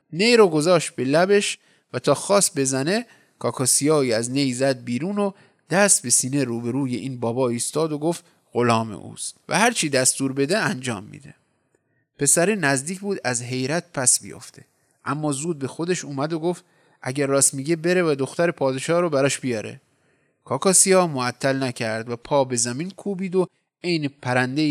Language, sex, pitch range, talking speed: Persian, male, 130-175 Hz, 170 wpm